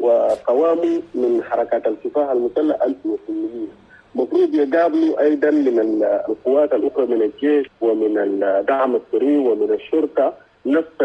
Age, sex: 50-69, male